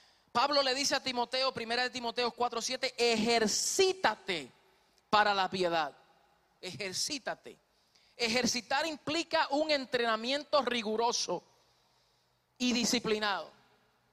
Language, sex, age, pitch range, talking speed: Spanish, male, 30-49, 220-280 Hz, 90 wpm